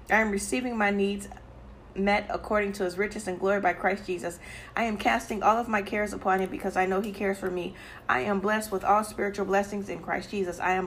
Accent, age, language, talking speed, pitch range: American, 40-59, English, 235 wpm, 180-200 Hz